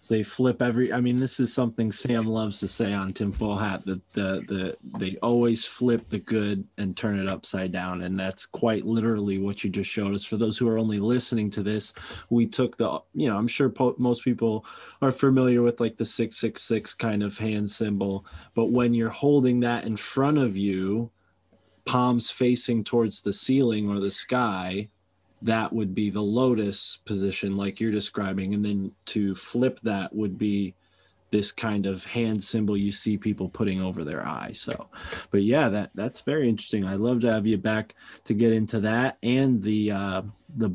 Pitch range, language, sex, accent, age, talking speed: 100-120 Hz, English, male, American, 20-39, 195 wpm